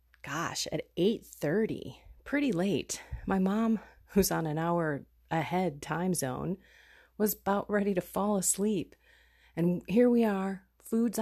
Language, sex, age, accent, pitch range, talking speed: English, female, 30-49, American, 150-210 Hz, 135 wpm